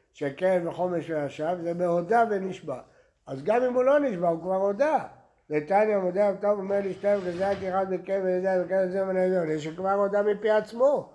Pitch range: 155-210 Hz